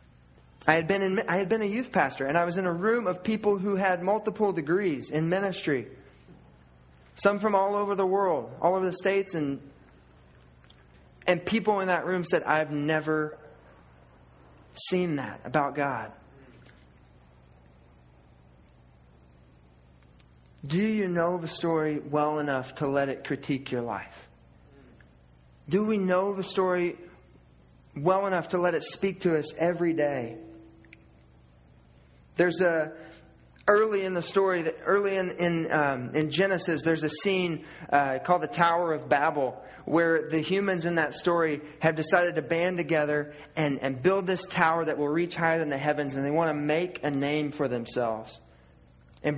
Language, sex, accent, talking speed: English, male, American, 160 wpm